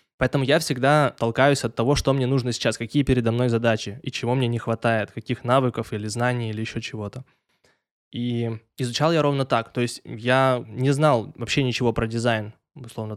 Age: 20-39